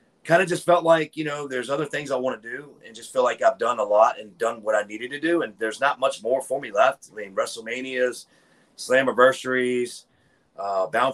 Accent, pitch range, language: American, 115-150 Hz, English